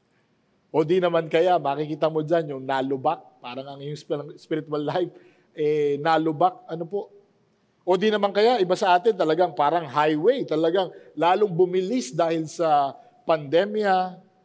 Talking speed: 140 wpm